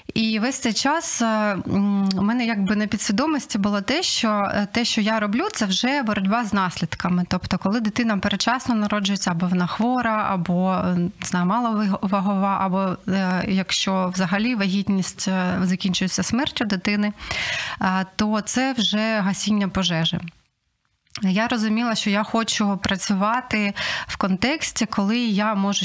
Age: 20-39